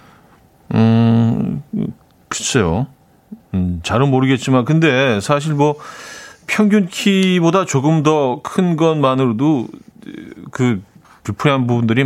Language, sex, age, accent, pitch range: Korean, male, 40-59, native, 115-170 Hz